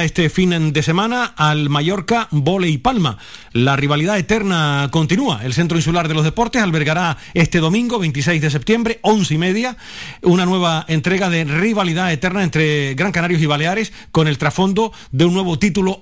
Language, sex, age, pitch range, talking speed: Spanish, male, 40-59, 155-190 Hz, 170 wpm